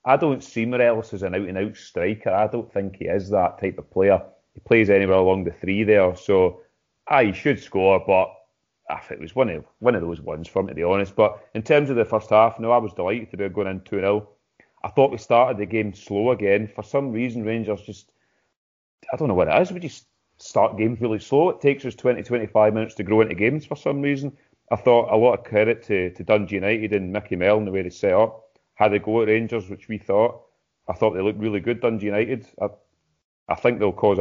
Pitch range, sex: 95-115 Hz, male